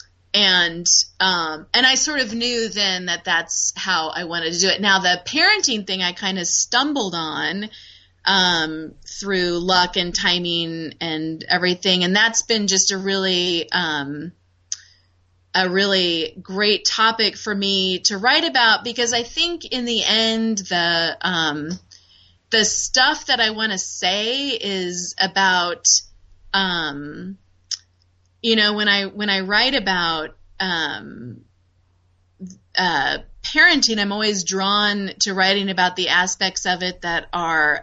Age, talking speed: 30-49, 140 wpm